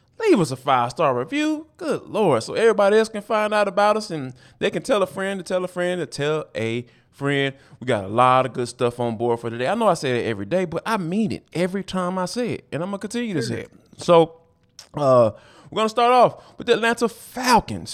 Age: 20-39